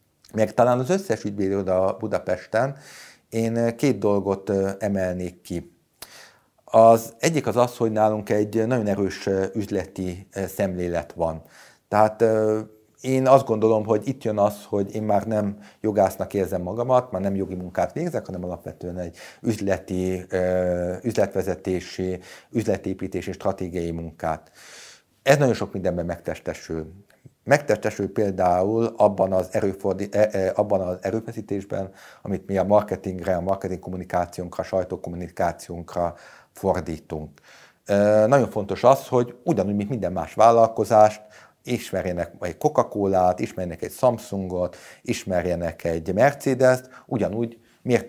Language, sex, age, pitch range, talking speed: Hungarian, male, 50-69, 90-110 Hz, 120 wpm